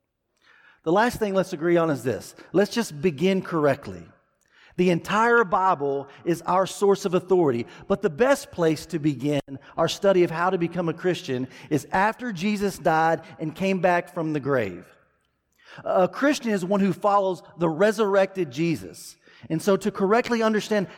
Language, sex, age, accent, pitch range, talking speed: English, male, 40-59, American, 150-195 Hz, 165 wpm